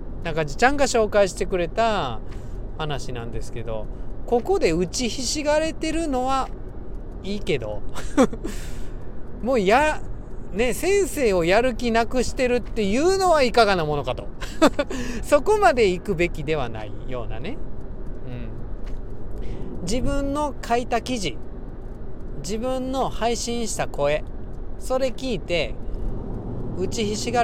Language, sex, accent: Japanese, male, native